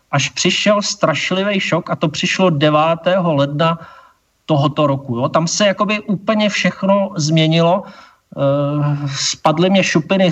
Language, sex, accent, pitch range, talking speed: Czech, male, native, 150-185 Hz, 130 wpm